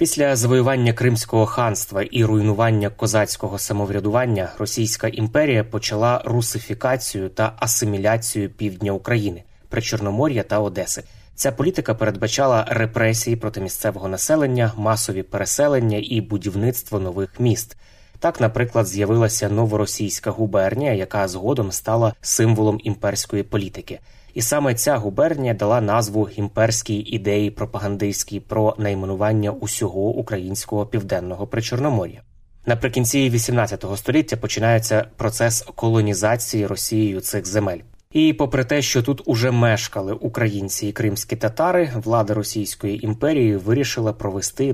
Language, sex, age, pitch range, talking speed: Ukrainian, male, 20-39, 100-115 Hz, 110 wpm